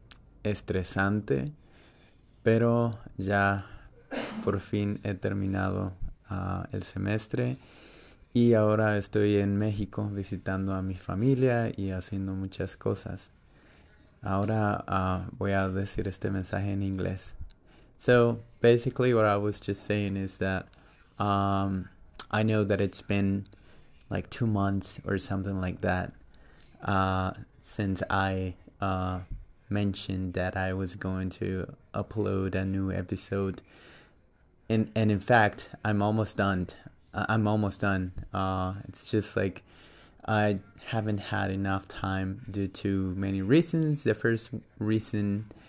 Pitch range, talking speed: 95-110 Hz, 125 wpm